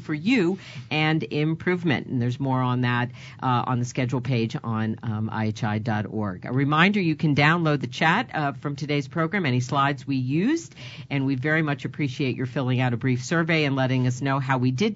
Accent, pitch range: American, 125-160 Hz